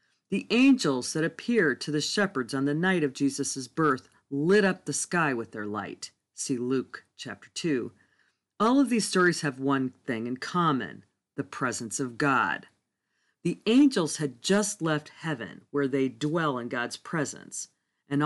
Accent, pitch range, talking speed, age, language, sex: American, 140-185 Hz, 165 wpm, 40-59, English, female